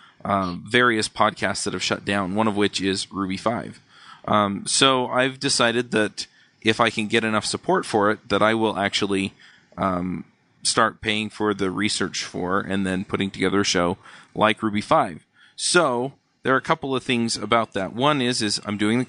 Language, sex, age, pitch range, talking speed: English, male, 30-49, 95-120 Hz, 190 wpm